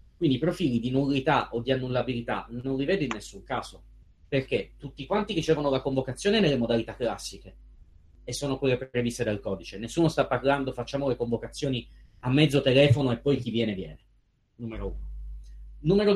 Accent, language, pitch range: native, Italian, 115-155 Hz